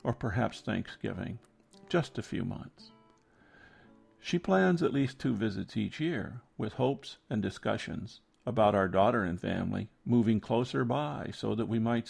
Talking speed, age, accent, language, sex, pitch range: 155 wpm, 50-69, American, English, male, 110-125 Hz